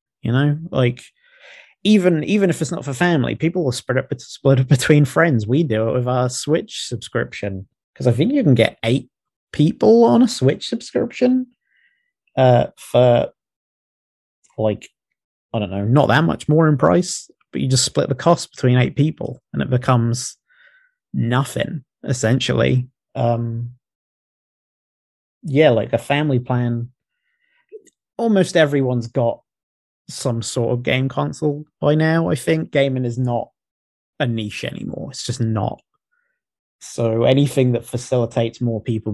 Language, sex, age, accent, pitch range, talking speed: English, male, 30-49, British, 120-165 Hz, 145 wpm